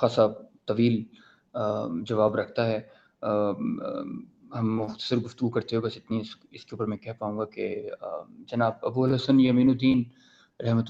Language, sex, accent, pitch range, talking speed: English, male, Indian, 115-135 Hz, 160 wpm